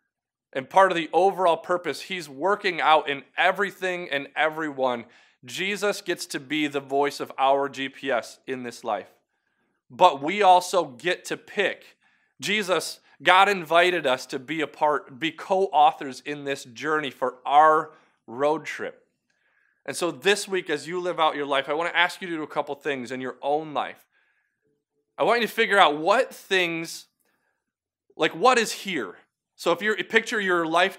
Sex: male